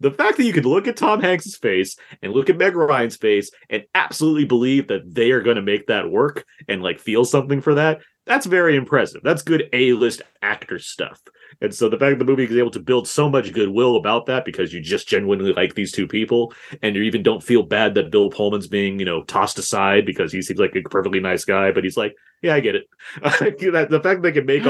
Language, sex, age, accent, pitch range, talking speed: English, male, 30-49, American, 105-155 Hz, 245 wpm